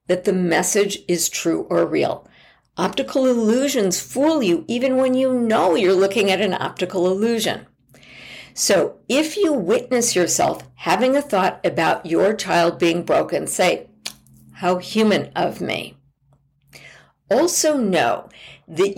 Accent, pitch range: American, 180-255 Hz